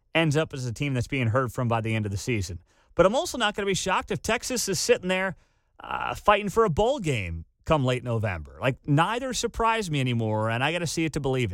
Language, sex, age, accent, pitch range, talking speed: English, male, 30-49, American, 110-160 Hz, 260 wpm